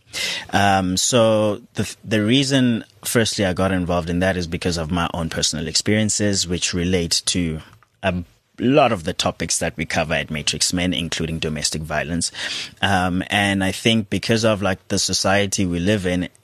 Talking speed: 170 wpm